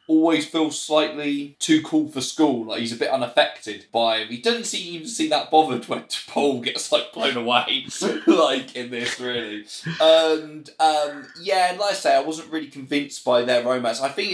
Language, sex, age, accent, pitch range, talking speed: English, male, 20-39, British, 105-155 Hz, 190 wpm